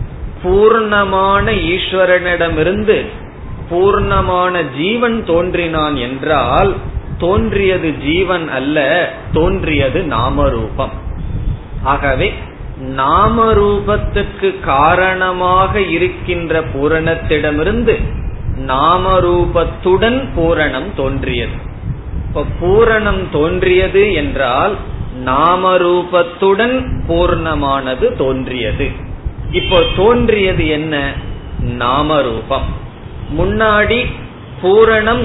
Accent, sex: native, male